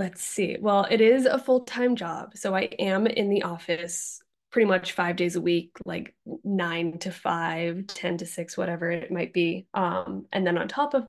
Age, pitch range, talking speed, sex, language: 10-29, 180-205 Hz, 200 wpm, female, English